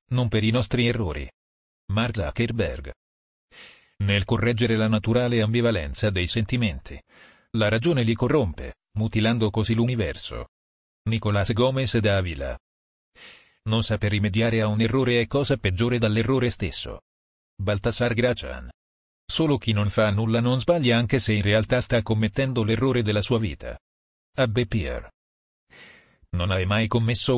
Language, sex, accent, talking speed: Italian, male, native, 135 wpm